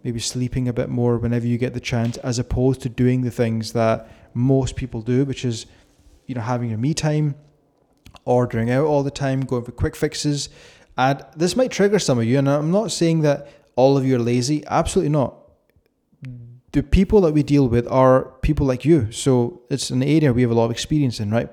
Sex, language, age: male, English, 20-39